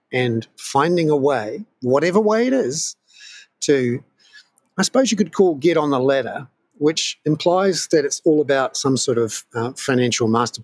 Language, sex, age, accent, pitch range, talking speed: English, male, 50-69, Australian, 115-170 Hz, 170 wpm